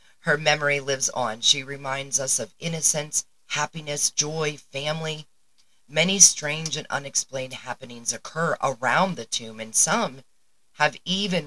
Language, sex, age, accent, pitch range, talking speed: English, female, 40-59, American, 115-155 Hz, 130 wpm